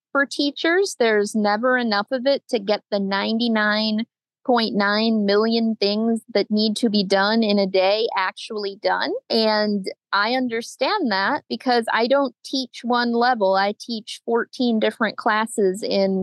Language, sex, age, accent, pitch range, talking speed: English, female, 30-49, American, 210-255 Hz, 145 wpm